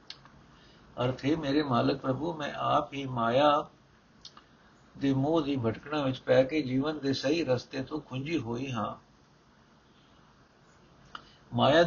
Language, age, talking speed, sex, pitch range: Punjabi, 60-79, 120 wpm, male, 130-150 Hz